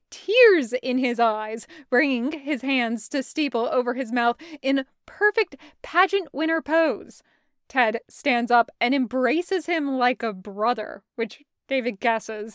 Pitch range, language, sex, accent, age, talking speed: 235-320 Hz, English, female, American, 20-39, 135 wpm